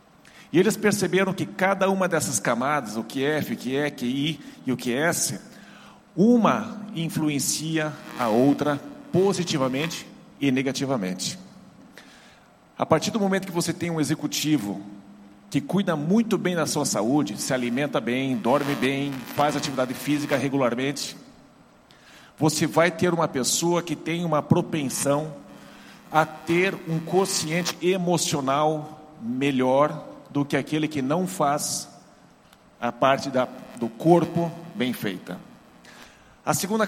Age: 50-69